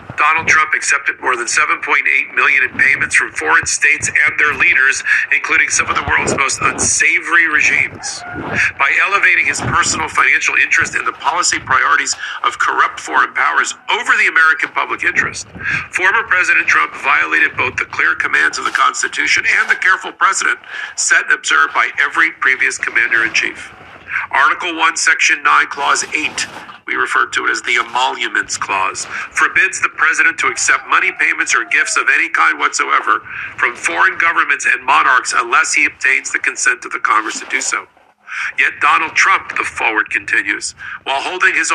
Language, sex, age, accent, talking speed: English, male, 50-69, American, 165 wpm